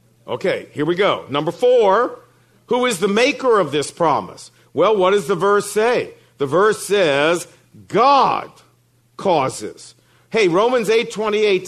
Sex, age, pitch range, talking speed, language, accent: male, 50-69, 170-225 Hz, 140 wpm, English, American